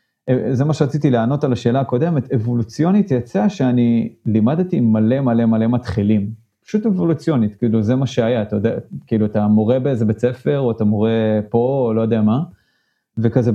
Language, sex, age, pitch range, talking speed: Hebrew, male, 30-49, 110-135 Hz, 170 wpm